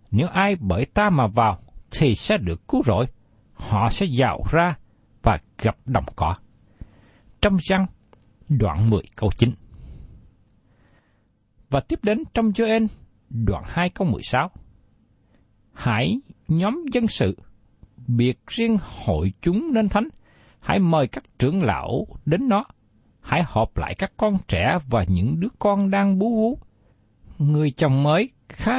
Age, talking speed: 60-79, 140 wpm